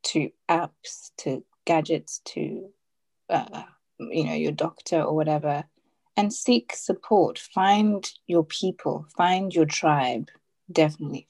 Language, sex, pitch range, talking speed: English, female, 150-190 Hz, 115 wpm